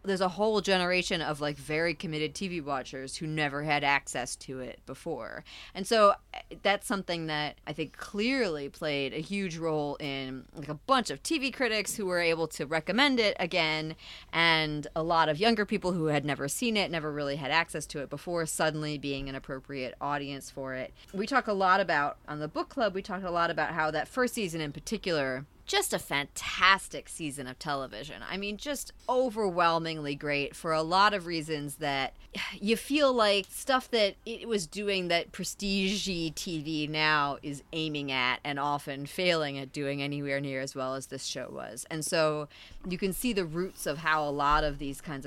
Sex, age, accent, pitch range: female, 30-49, American, 145-195 Hz